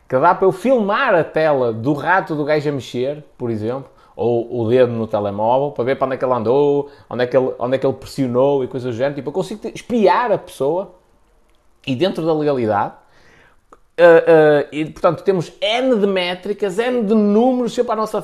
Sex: male